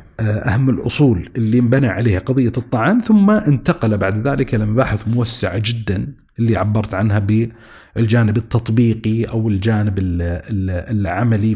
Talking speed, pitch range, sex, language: 115 wpm, 110-135 Hz, male, Arabic